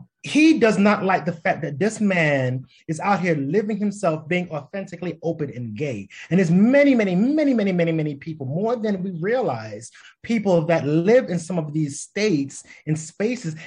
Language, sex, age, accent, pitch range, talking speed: English, male, 30-49, American, 150-210 Hz, 185 wpm